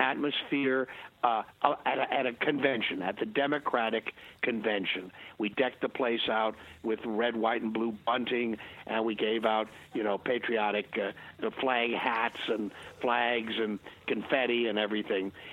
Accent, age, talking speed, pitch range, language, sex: American, 60-79, 150 wpm, 115-155 Hz, English, male